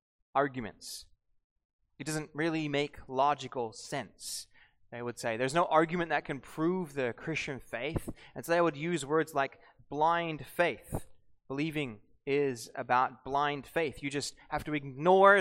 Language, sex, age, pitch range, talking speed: English, male, 20-39, 135-180 Hz, 150 wpm